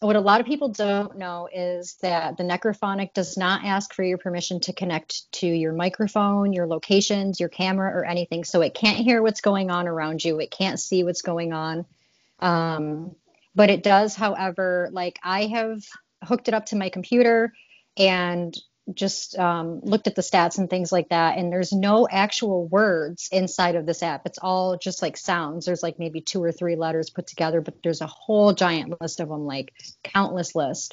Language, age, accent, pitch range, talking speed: English, 30-49, American, 170-205 Hz, 200 wpm